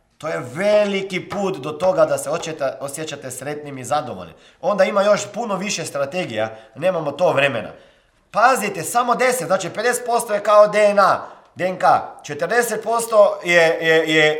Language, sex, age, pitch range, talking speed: Croatian, male, 30-49, 155-240 Hz, 145 wpm